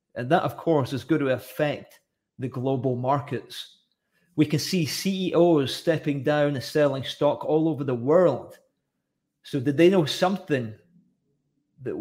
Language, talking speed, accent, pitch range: English, 150 wpm, British, 135-170 Hz